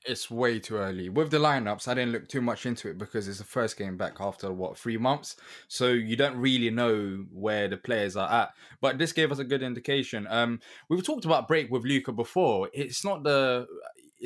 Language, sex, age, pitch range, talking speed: English, male, 10-29, 105-130 Hz, 220 wpm